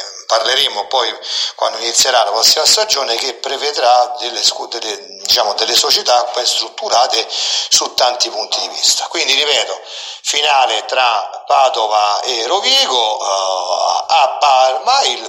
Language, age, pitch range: Italian, 40-59, 115-135 Hz